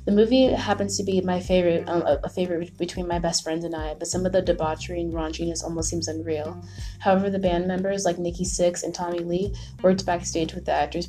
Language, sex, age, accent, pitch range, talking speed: English, female, 20-39, American, 160-180 Hz, 225 wpm